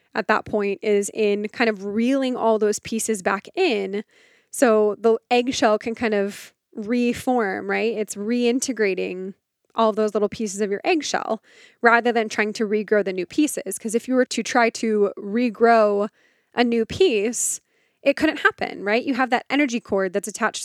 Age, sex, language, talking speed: 20-39, female, English, 175 wpm